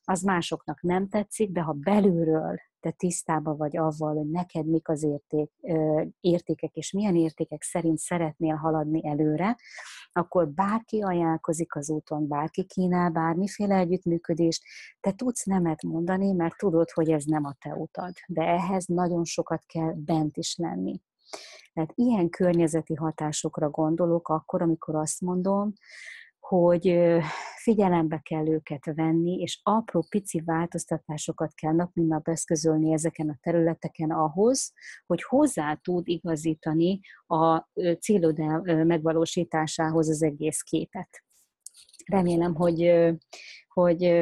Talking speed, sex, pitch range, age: 125 wpm, female, 155-175 Hz, 30-49